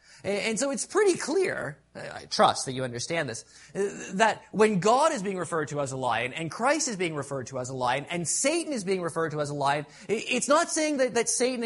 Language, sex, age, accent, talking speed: English, male, 20-39, American, 230 wpm